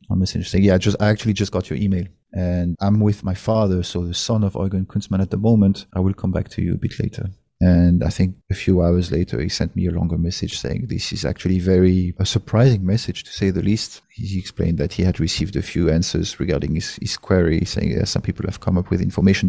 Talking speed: 245 wpm